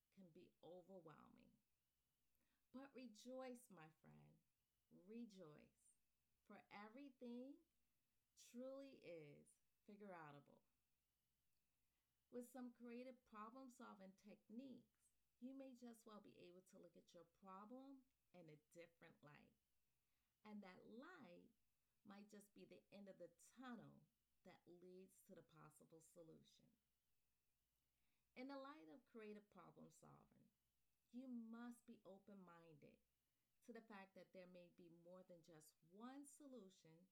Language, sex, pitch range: English, female, 180-245 Hz